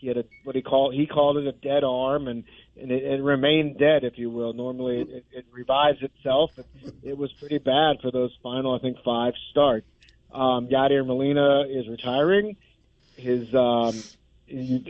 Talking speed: 180 wpm